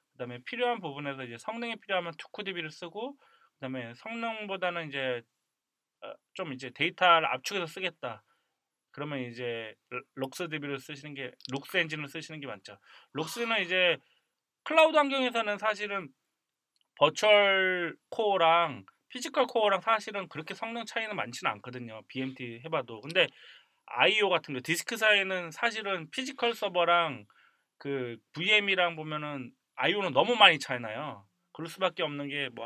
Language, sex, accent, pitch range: Korean, male, native, 135-210 Hz